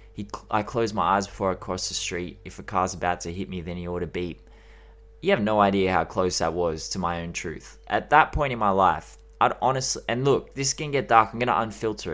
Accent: Australian